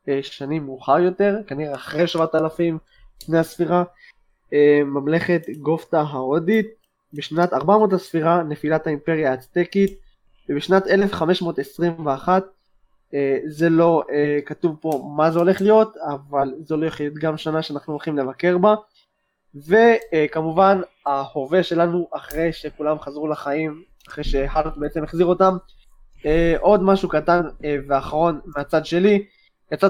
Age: 20-39